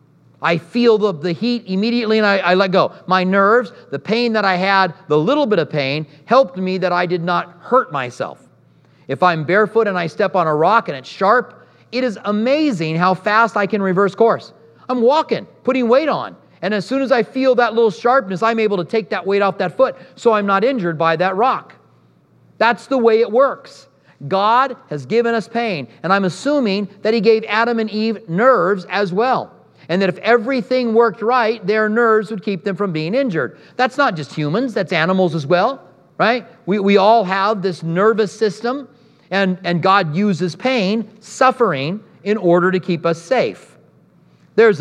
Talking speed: 195 wpm